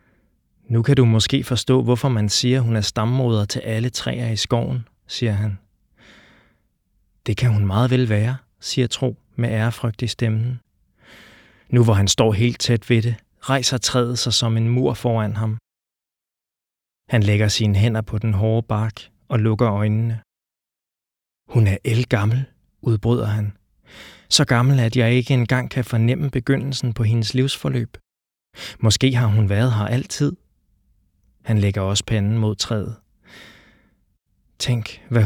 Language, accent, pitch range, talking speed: Danish, native, 105-120 Hz, 150 wpm